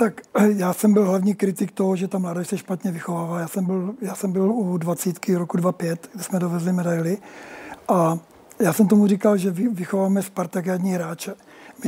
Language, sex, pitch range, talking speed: Czech, male, 185-220 Hz, 190 wpm